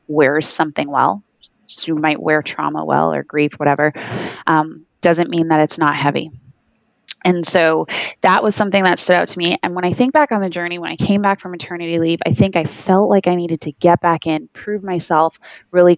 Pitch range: 160-180 Hz